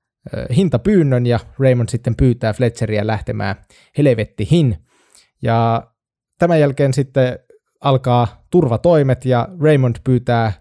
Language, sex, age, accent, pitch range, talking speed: Finnish, male, 20-39, native, 115-140 Hz, 95 wpm